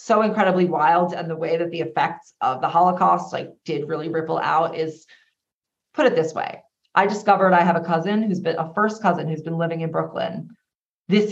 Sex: female